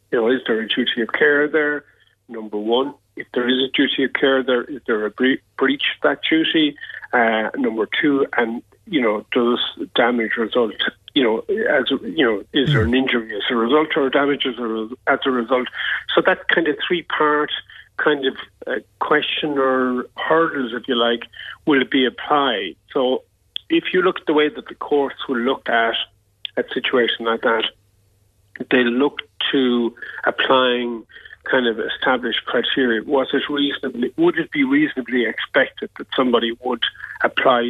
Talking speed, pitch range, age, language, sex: 170 wpm, 120-150 Hz, 50-69, English, male